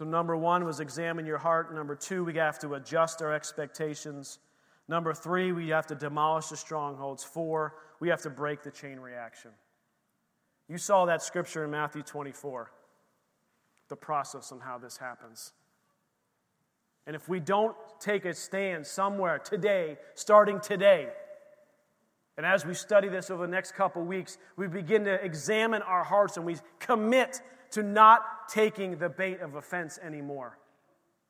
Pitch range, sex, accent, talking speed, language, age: 150-190 Hz, male, American, 160 wpm, English, 30-49